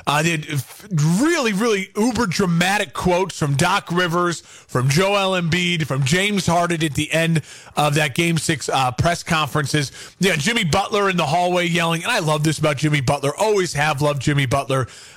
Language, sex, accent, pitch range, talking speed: English, male, American, 145-185 Hz, 180 wpm